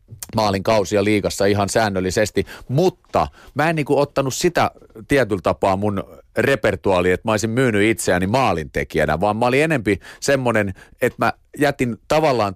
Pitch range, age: 100-130 Hz, 30-49